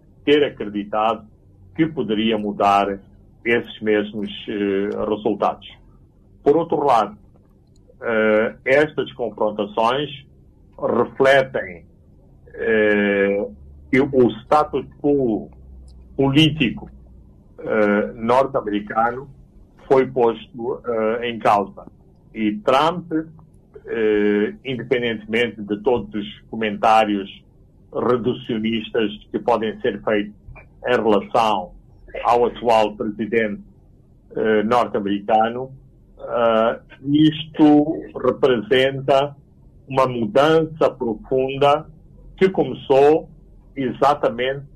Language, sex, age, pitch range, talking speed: Portuguese, male, 60-79, 105-135 Hz, 70 wpm